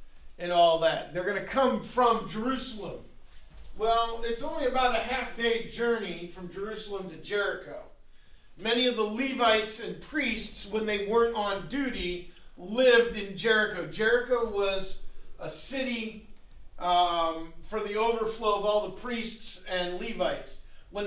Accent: American